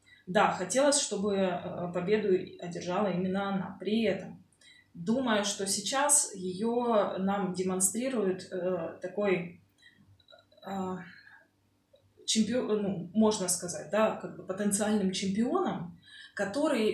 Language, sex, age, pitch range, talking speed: Russian, female, 20-39, 180-215 Hz, 100 wpm